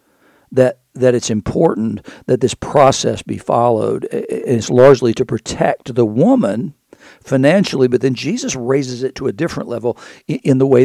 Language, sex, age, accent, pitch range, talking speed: English, male, 60-79, American, 120-140 Hz, 155 wpm